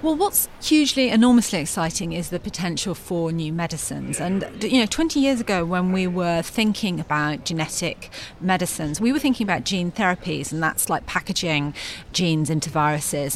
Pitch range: 170-235 Hz